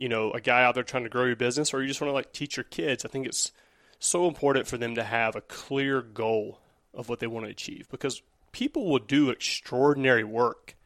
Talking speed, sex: 245 wpm, male